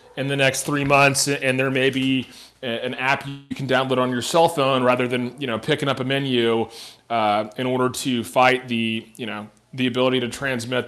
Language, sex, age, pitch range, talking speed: English, male, 30-49, 120-140 Hz, 210 wpm